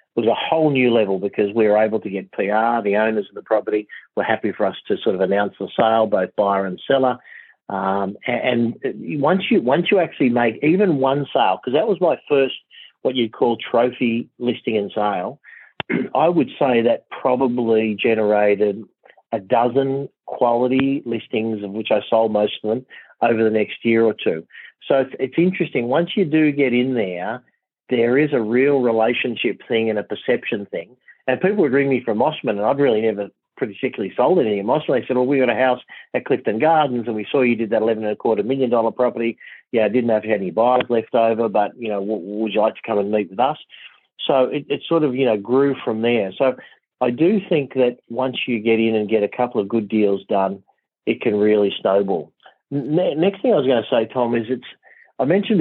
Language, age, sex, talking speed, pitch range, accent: English, 50-69, male, 220 wpm, 110-130 Hz, Australian